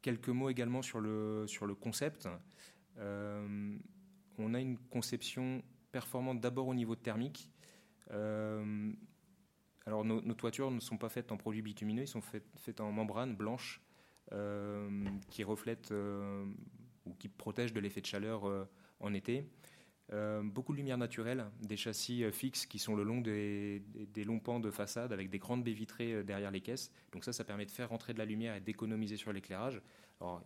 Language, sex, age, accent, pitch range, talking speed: French, male, 30-49, French, 100-115 Hz, 185 wpm